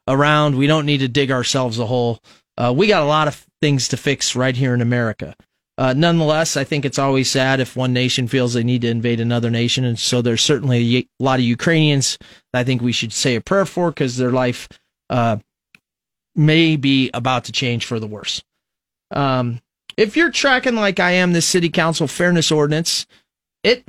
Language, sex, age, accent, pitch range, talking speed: English, male, 30-49, American, 125-165 Hz, 210 wpm